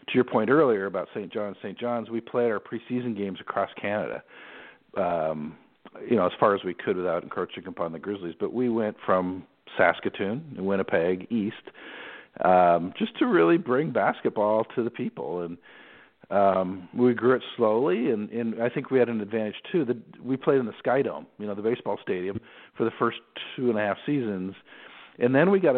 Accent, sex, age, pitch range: American, male, 50-69, 95-120 Hz